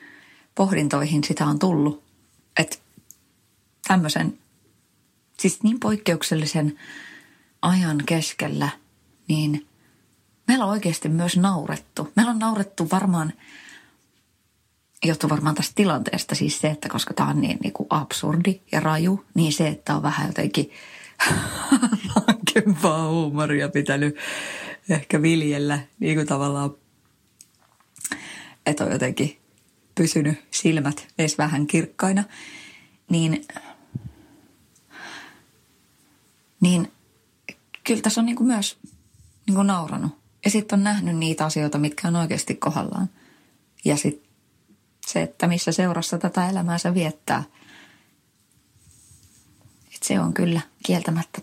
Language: Finnish